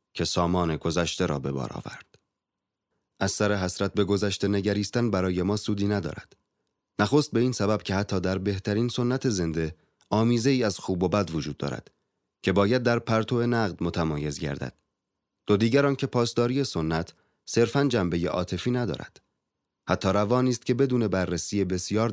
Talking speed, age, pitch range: 150 wpm, 30-49, 85-110 Hz